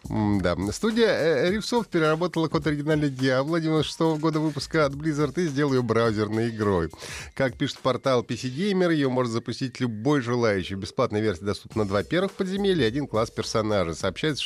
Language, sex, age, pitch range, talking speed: Russian, male, 30-49, 100-145 Hz, 160 wpm